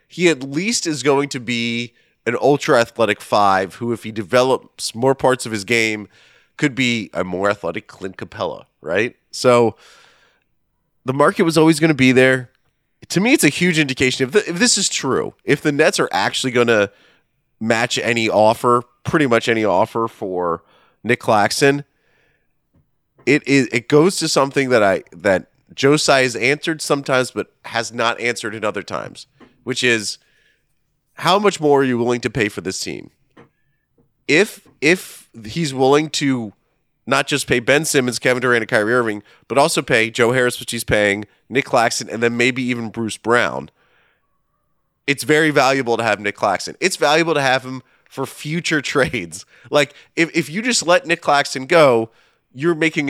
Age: 30-49